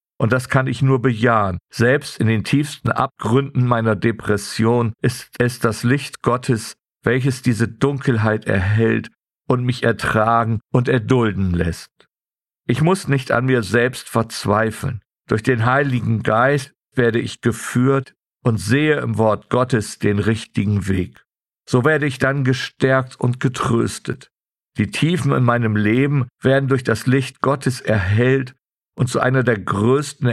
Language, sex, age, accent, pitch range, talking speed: German, male, 50-69, German, 110-130 Hz, 145 wpm